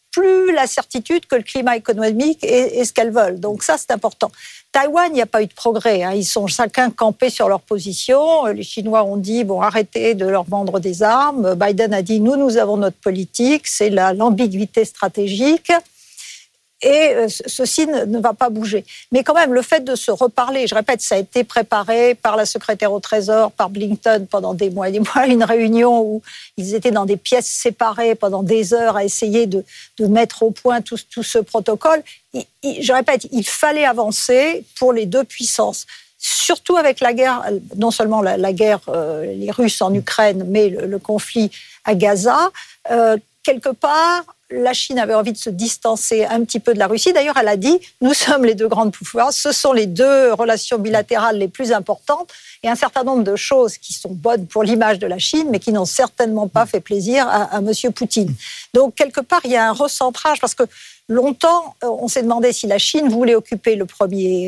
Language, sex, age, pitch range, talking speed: French, female, 60-79, 210-260 Hz, 205 wpm